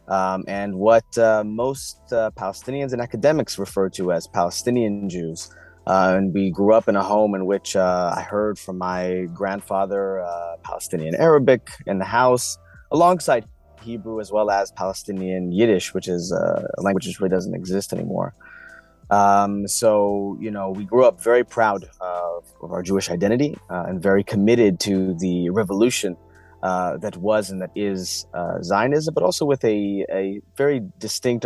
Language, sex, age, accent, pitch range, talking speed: English, male, 30-49, American, 90-105 Hz, 170 wpm